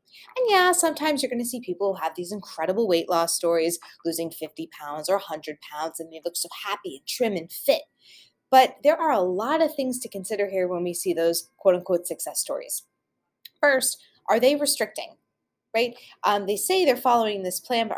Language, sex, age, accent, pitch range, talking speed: English, female, 20-39, American, 180-290 Hz, 200 wpm